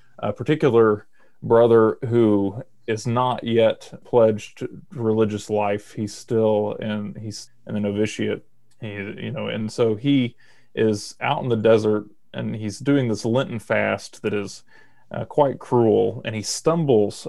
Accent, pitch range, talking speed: American, 105-120 Hz, 135 wpm